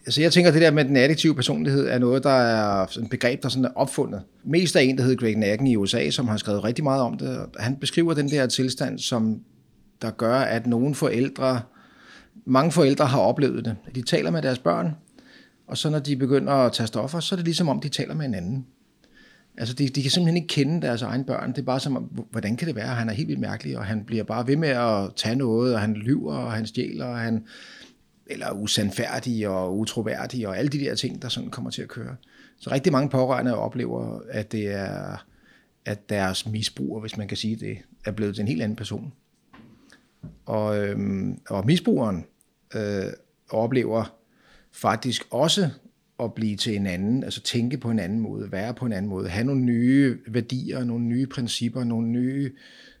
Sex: male